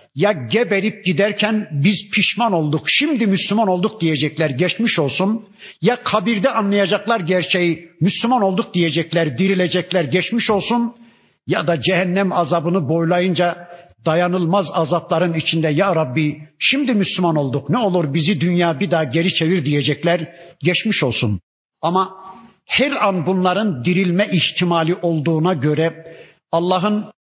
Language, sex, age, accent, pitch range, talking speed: Turkish, male, 50-69, native, 160-195 Hz, 120 wpm